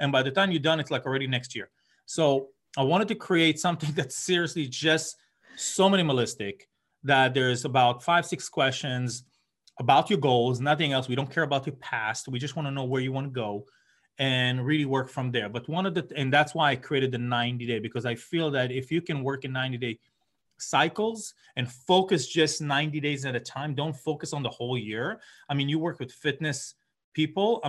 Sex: male